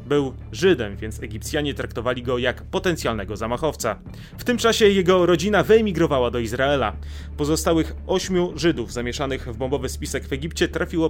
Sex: male